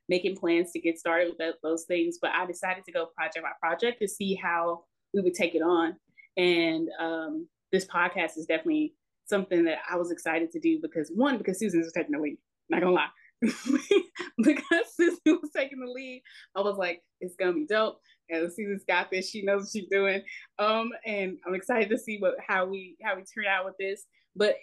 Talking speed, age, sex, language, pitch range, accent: 205 wpm, 20-39, female, English, 165-225 Hz, American